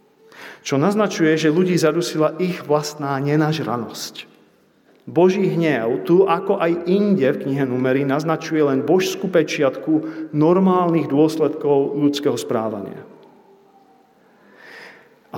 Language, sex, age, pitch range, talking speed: Slovak, male, 40-59, 140-180 Hz, 100 wpm